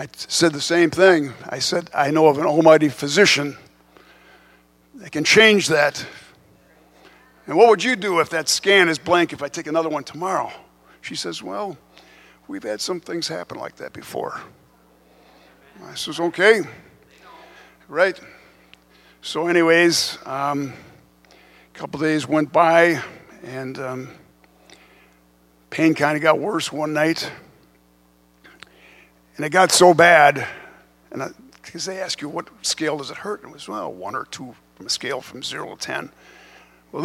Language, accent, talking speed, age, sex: English, American, 155 wpm, 50-69, male